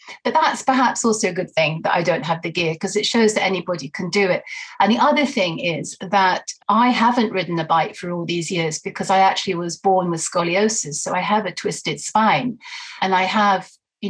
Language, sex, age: English, female, 40-59